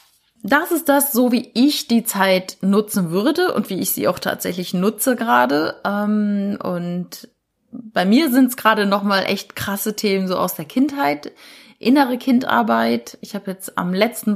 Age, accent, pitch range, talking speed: 20-39, German, 195-255 Hz, 165 wpm